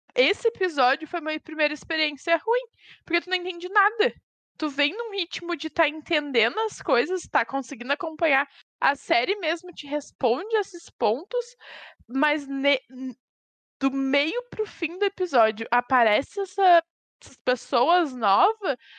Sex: female